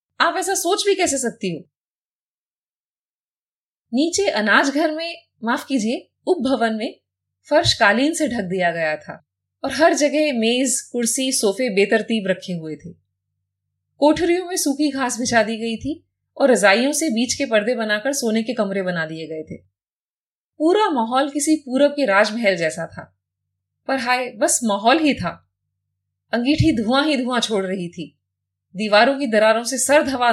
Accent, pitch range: native, 200-295 Hz